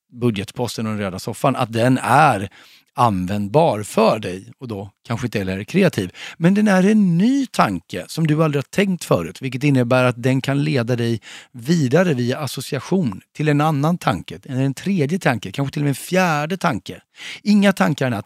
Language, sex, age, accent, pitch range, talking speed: Swedish, male, 40-59, native, 110-160 Hz, 185 wpm